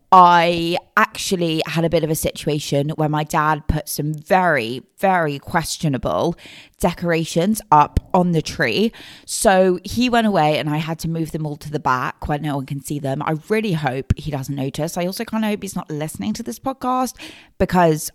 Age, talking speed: 20-39, 195 wpm